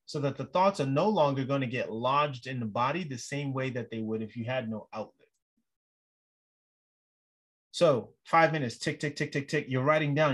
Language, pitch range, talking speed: English, 130-160 Hz, 210 wpm